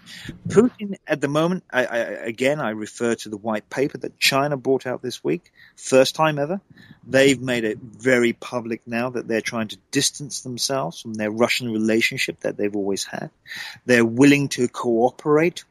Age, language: 40-59, English